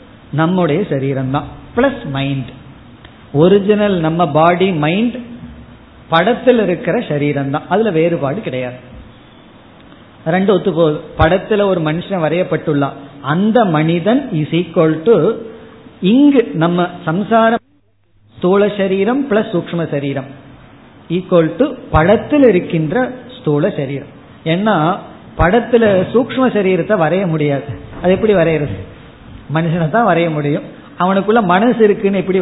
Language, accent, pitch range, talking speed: Tamil, native, 150-205 Hz, 110 wpm